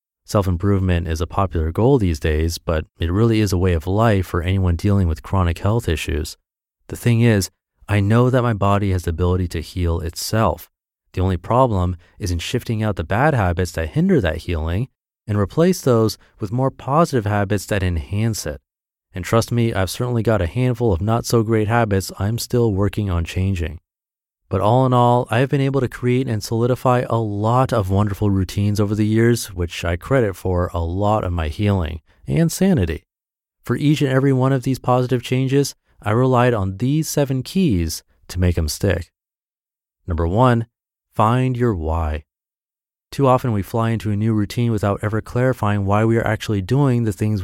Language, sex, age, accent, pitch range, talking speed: English, male, 30-49, American, 90-120 Hz, 190 wpm